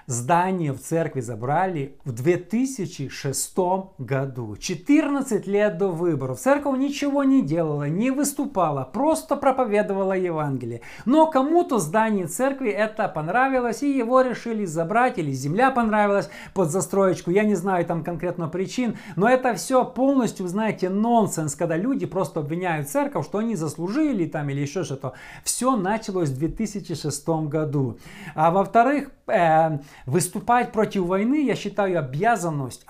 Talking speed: 135 wpm